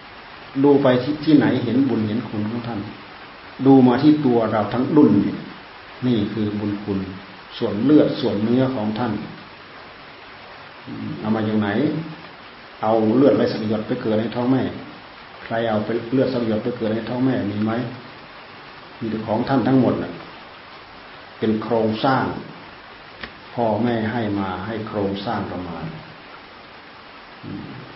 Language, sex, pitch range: Thai, male, 105-125 Hz